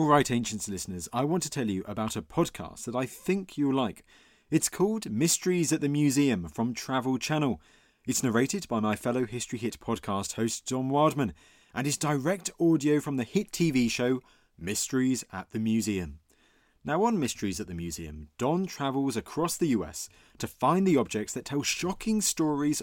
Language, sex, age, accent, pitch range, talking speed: English, male, 30-49, British, 115-165 Hz, 180 wpm